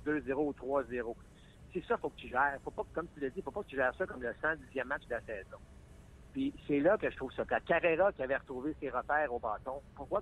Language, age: French, 60-79